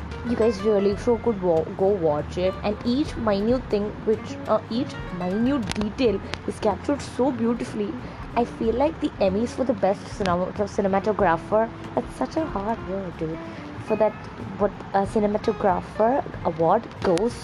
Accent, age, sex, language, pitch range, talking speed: Indian, 20-39, female, English, 190-255 Hz, 155 wpm